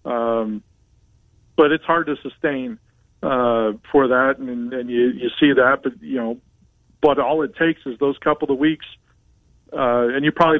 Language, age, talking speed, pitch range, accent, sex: English, 40-59, 175 wpm, 125-150 Hz, American, male